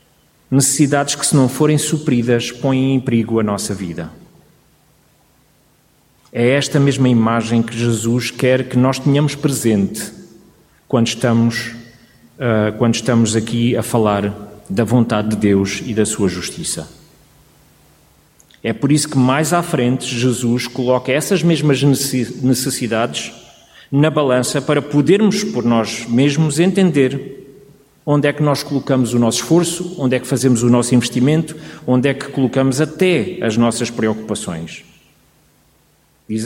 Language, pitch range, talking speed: Portuguese, 120-155 Hz, 135 wpm